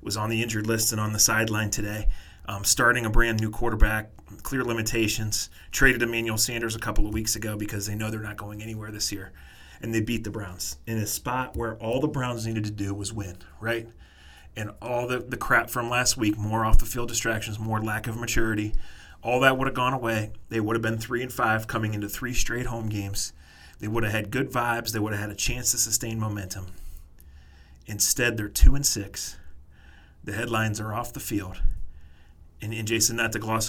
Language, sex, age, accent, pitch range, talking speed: English, male, 30-49, American, 100-115 Hz, 210 wpm